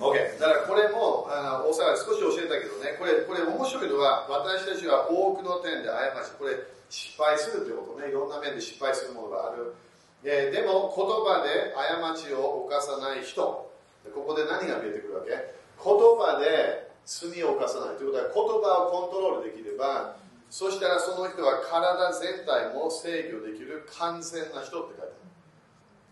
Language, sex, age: Japanese, male, 40-59